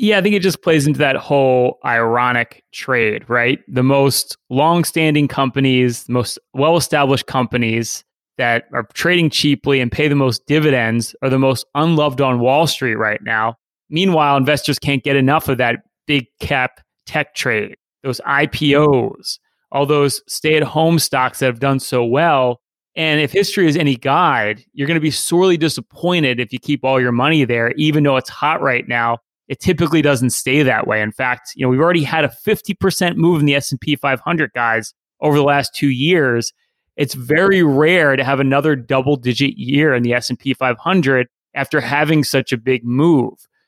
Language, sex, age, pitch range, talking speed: English, male, 30-49, 125-155 Hz, 175 wpm